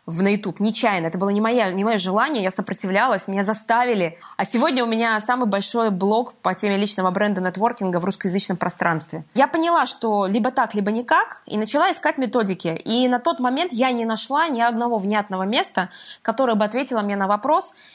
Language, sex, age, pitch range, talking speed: Russian, female, 20-39, 200-255 Hz, 185 wpm